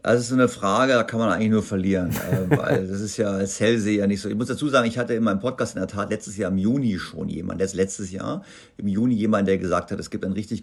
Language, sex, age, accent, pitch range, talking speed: German, male, 50-69, German, 95-115 Hz, 280 wpm